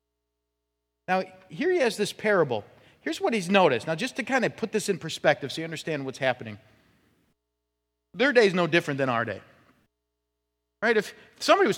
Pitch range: 130-195 Hz